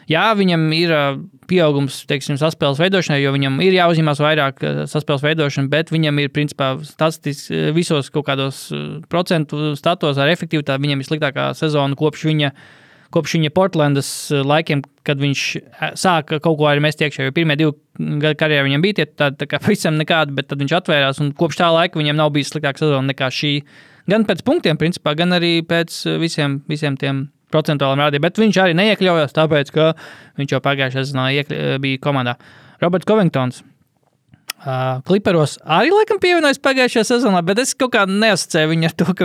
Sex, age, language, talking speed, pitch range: male, 20-39, English, 165 wpm, 140-170 Hz